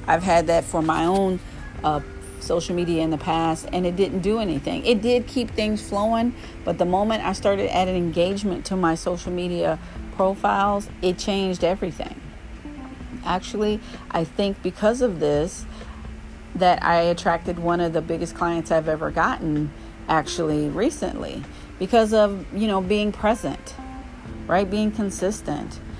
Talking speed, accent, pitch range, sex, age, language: 150 wpm, American, 160-205 Hz, female, 40-59, English